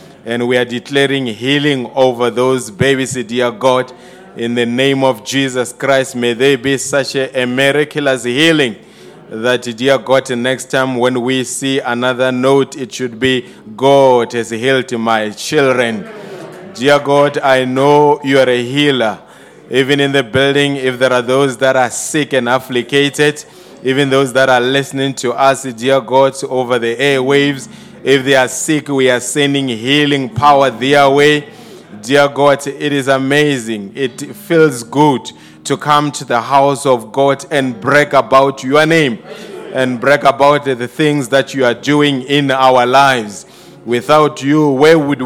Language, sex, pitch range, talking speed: English, male, 125-145 Hz, 160 wpm